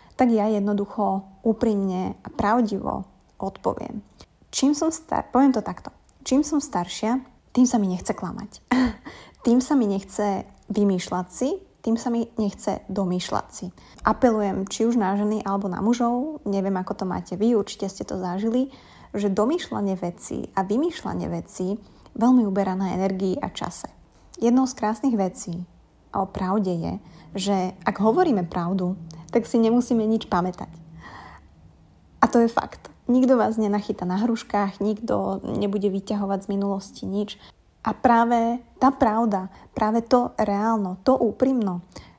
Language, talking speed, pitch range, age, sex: Slovak, 145 wpm, 190-235 Hz, 30-49, female